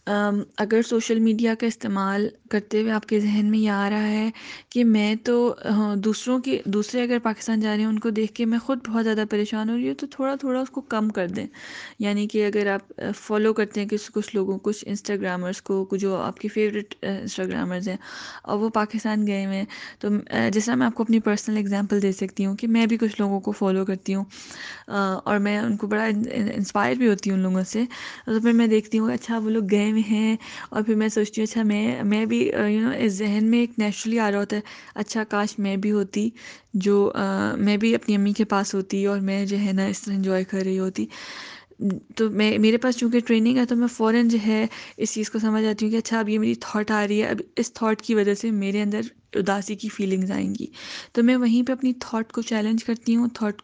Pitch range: 205-230 Hz